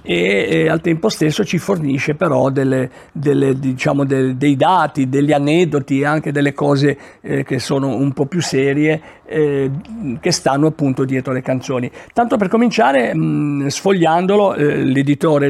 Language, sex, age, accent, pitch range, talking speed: Italian, male, 50-69, native, 140-180 Hz, 155 wpm